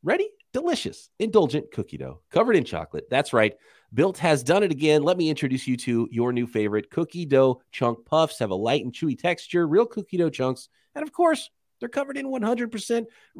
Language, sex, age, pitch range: English, male, 30-49, 115-170 Hz